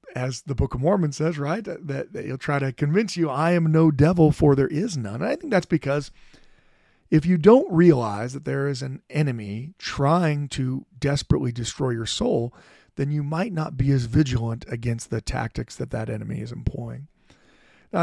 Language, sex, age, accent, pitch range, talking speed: English, male, 40-59, American, 130-165 Hz, 195 wpm